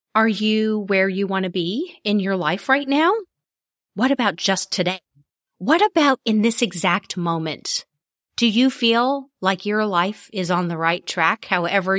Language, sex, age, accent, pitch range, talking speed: English, female, 30-49, American, 185-265 Hz, 170 wpm